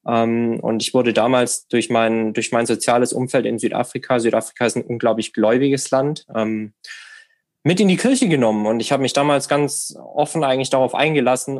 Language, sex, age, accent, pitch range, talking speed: German, male, 20-39, German, 115-135 Hz, 180 wpm